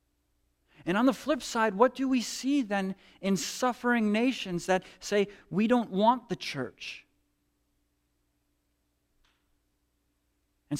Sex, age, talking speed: male, 40-59, 115 wpm